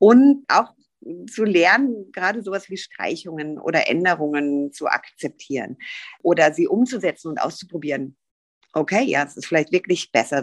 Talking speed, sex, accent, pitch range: 140 wpm, female, German, 150-200 Hz